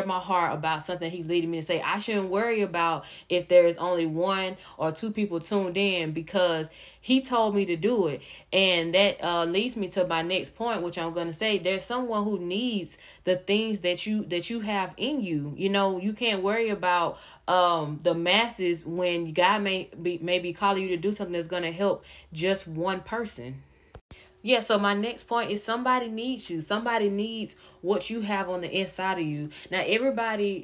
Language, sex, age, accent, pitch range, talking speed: English, female, 10-29, American, 170-205 Hz, 200 wpm